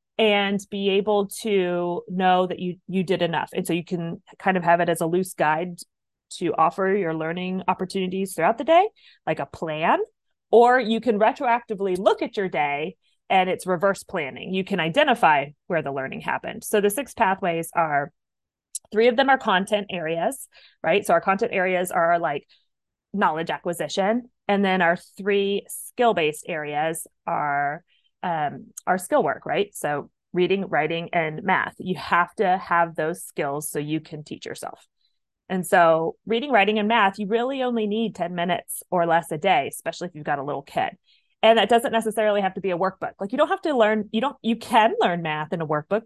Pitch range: 170-220 Hz